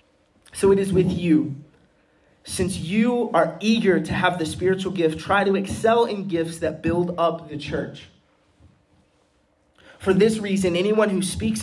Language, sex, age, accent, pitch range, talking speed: English, male, 20-39, American, 155-195 Hz, 155 wpm